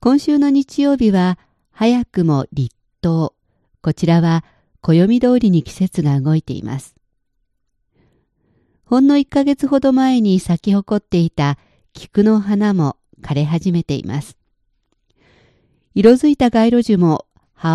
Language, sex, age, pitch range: Japanese, female, 50-69, 150-230 Hz